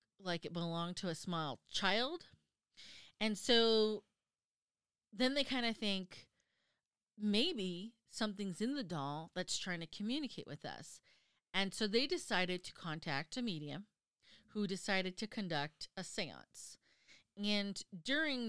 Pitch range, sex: 170-215 Hz, female